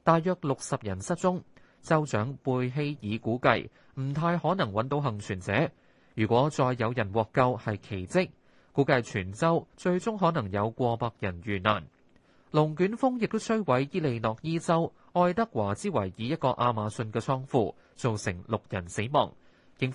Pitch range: 110-165 Hz